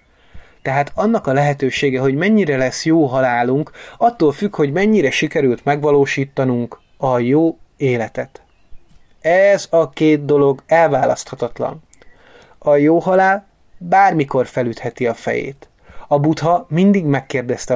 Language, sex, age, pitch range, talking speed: Hungarian, male, 30-49, 125-160 Hz, 115 wpm